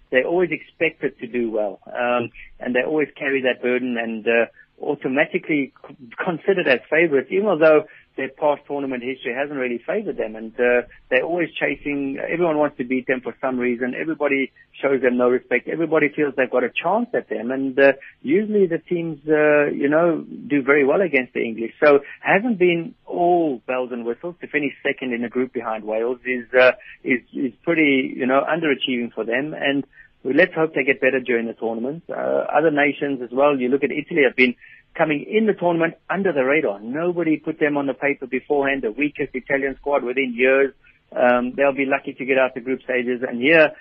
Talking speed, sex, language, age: 200 wpm, male, English, 50-69